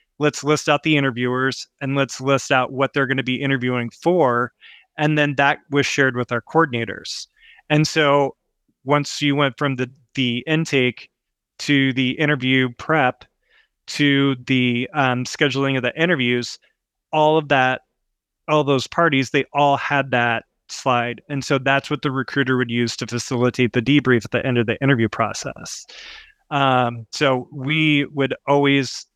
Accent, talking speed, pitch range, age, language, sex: American, 165 wpm, 125-145 Hz, 20-39, English, male